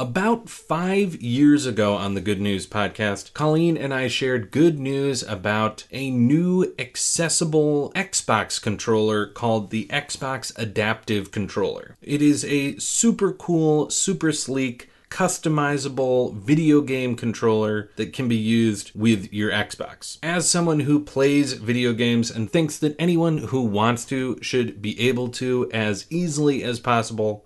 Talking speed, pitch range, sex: 140 wpm, 115-150 Hz, male